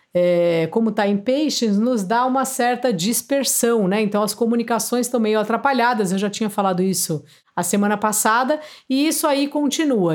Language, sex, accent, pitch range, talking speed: Portuguese, female, Brazilian, 200-250 Hz, 165 wpm